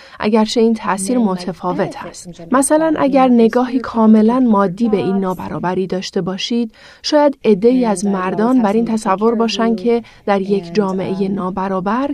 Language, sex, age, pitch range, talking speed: Persian, female, 30-49, 195-240 Hz, 145 wpm